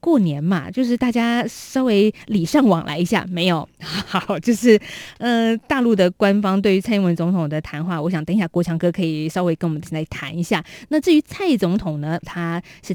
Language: Chinese